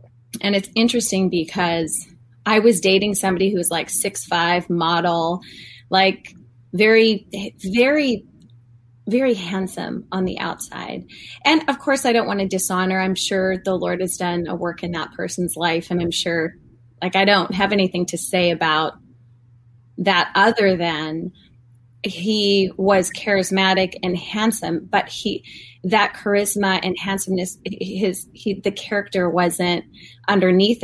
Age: 20-39